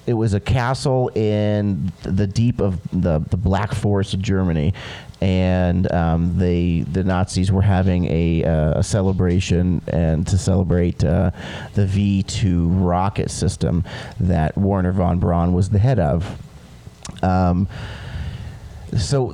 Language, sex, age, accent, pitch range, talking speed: English, male, 30-49, American, 90-115 Hz, 135 wpm